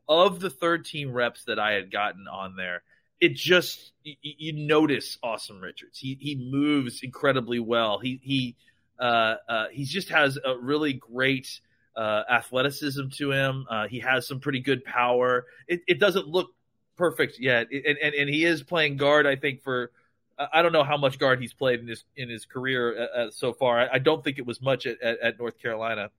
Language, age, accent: English, 30-49, American